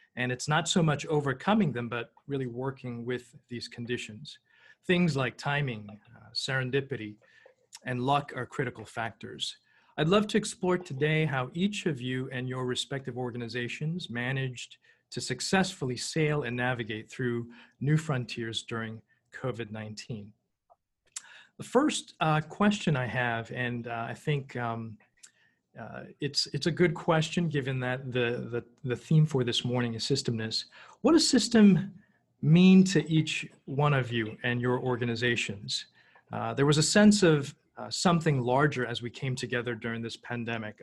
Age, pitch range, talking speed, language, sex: 40-59, 120-155 Hz, 150 wpm, English, male